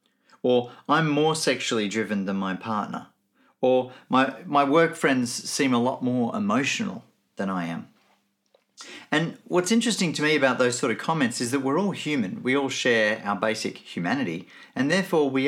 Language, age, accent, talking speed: English, 40-59, Australian, 175 wpm